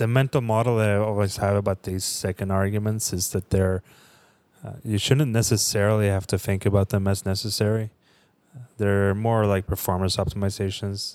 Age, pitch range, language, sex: 20-39, 95-110 Hz, English, male